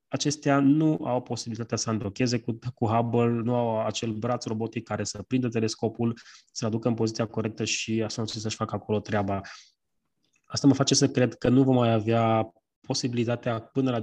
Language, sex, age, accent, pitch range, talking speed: Romanian, male, 20-39, native, 110-130 Hz, 185 wpm